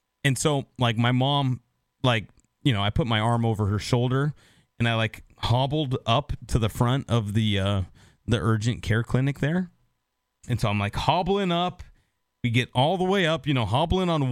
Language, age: English, 30-49